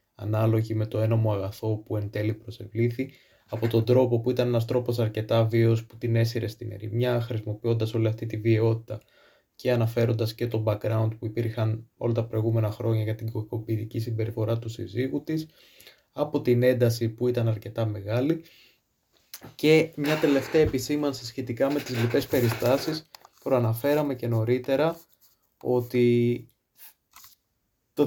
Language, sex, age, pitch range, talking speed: Greek, male, 20-39, 115-145 Hz, 145 wpm